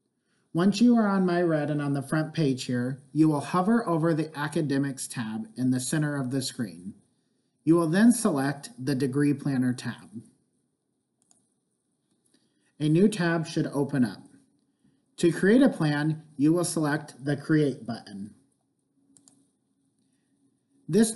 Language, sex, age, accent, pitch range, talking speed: English, male, 40-59, American, 135-165 Hz, 140 wpm